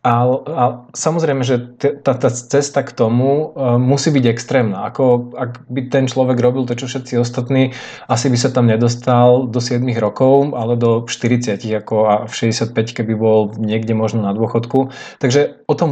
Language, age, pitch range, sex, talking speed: Slovak, 20-39, 115-130 Hz, male, 160 wpm